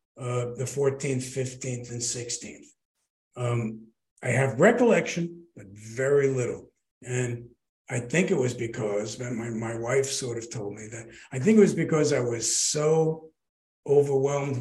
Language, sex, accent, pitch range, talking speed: English, male, American, 120-140 Hz, 150 wpm